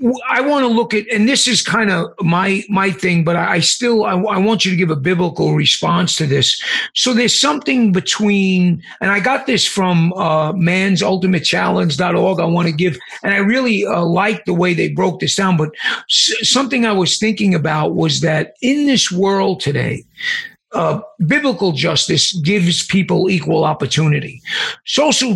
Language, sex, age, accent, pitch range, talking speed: English, male, 50-69, American, 165-200 Hz, 180 wpm